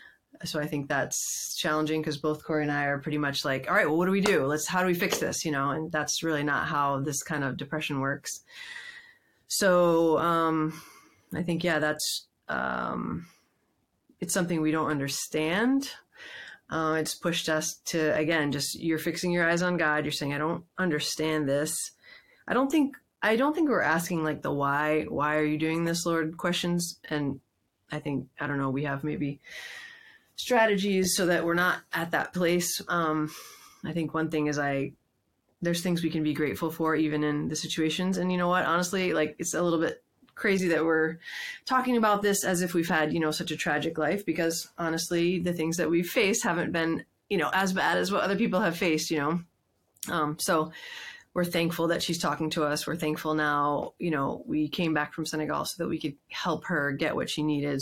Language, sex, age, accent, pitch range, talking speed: English, female, 30-49, American, 150-175 Hz, 205 wpm